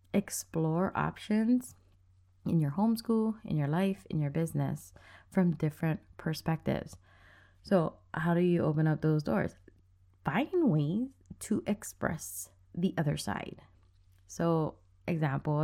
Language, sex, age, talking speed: English, female, 20-39, 120 wpm